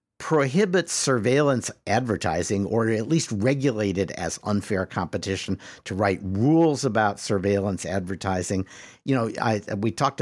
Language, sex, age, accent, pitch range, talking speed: English, male, 50-69, American, 95-120 Hz, 125 wpm